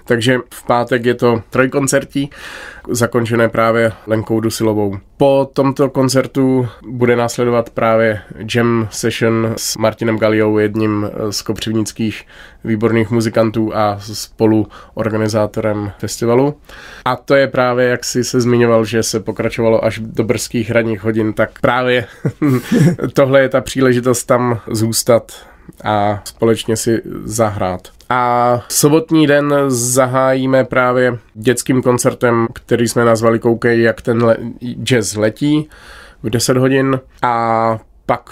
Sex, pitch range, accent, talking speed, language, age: male, 110-125 Hz, native, 120 wpm, Czech, 20-39